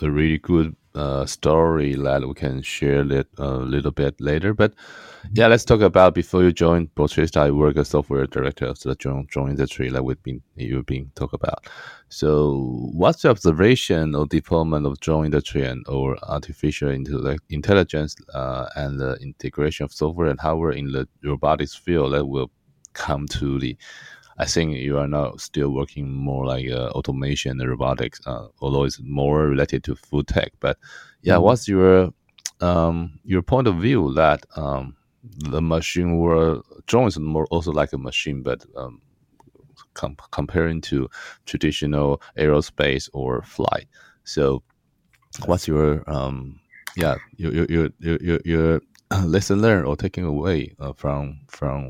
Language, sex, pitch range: Chinese, male, 70-80 Hz